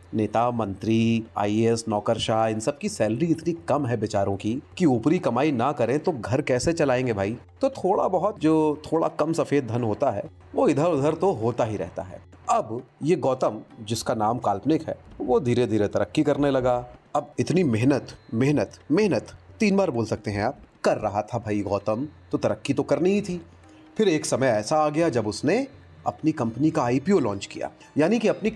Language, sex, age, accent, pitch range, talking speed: Hindi, male, 30-49, native, 105-155 Hz, 195 wpm